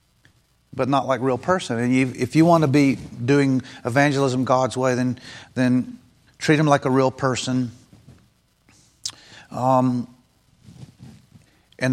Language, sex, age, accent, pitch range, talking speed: English, male, 50-69, American, 125-145 Hz, 130 wpm